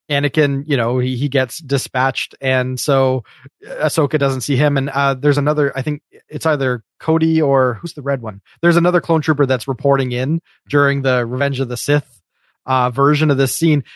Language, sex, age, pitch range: English, male, 30-49, 130-150 Hz